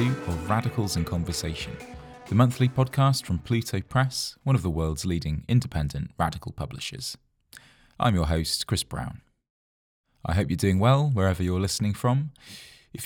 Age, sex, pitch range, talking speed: 20-39, male, 80-115 Hz, 150 wpm